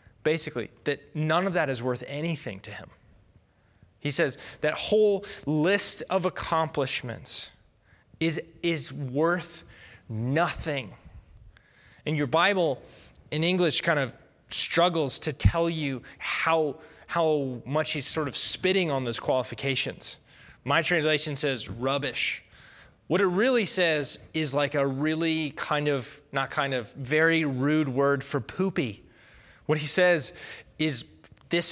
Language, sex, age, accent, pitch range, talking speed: English, male, 20-39, American, 130-170 Hz, 130 wpm